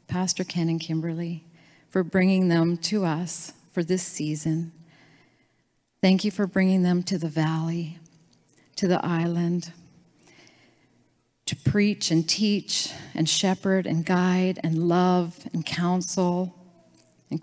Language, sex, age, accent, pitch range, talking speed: English, female, 40-59, American, 160-185 Hz, 125 wpm